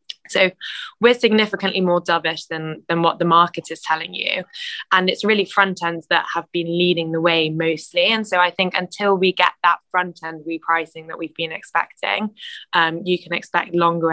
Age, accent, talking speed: 20-39, British, 190 wpm